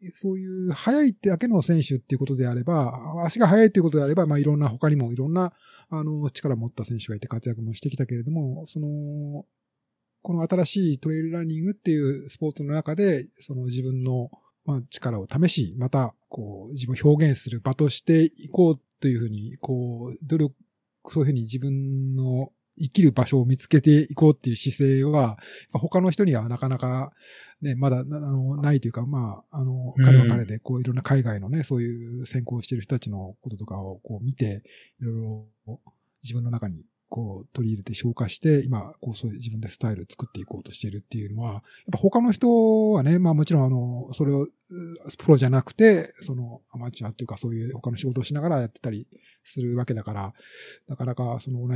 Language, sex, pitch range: Japanese, male, 120-155 Hz